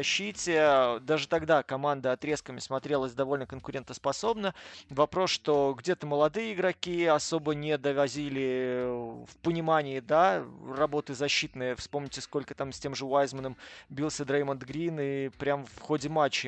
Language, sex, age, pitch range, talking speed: Russian, male, 20-39, 135-155 Hz, 130 wpm